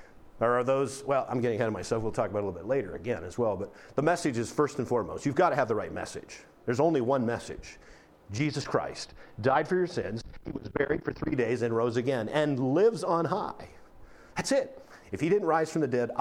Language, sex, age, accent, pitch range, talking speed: English, male, 40-59, American, 120-180 Hz, 245 wpm